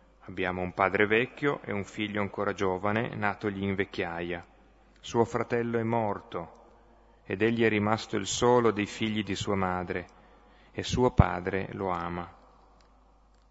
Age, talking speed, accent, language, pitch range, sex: 30-49, 140 wpm, native, Italian, 95-110 Hz, male